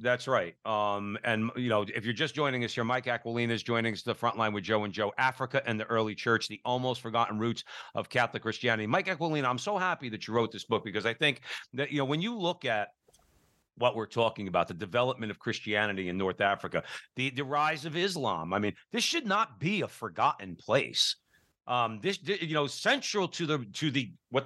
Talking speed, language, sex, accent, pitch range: 225 wpm, English, male, American, 110-150 Hz